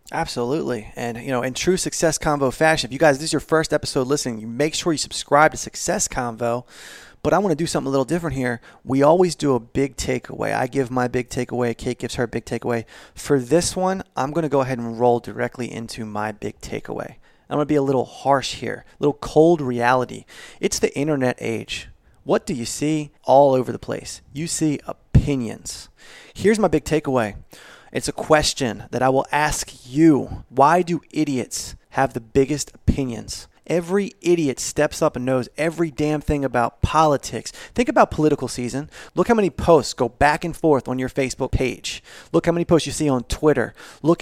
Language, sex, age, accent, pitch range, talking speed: English, male, 20-39, American, 120-155 Hz, 205 wpm